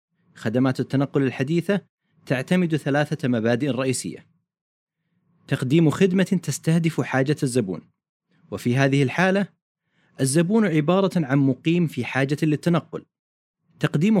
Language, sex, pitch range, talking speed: Arabic, male, 135-175 Hz, 95 wpm